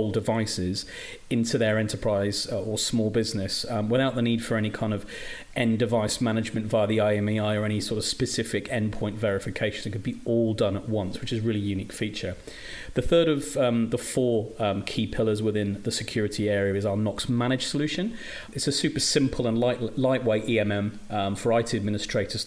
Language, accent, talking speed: English, British, 185 wpm